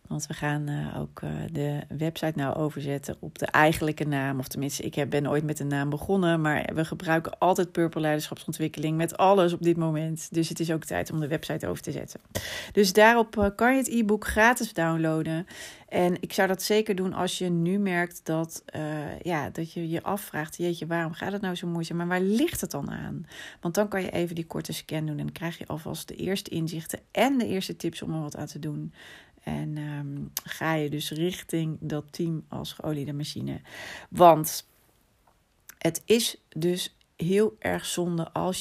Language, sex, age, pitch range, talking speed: Dutch, female, 30-49, 155-185 Hz, 195 wpm